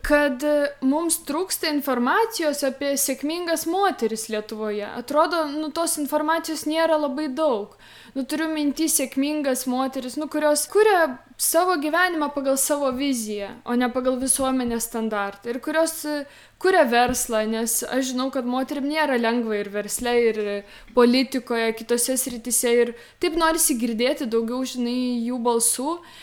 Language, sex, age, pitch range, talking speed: English, female, 20-39, 240-305 Hz, 135 wpm